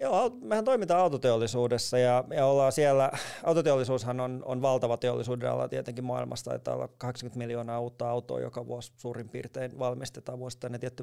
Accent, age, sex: native, 30-49, male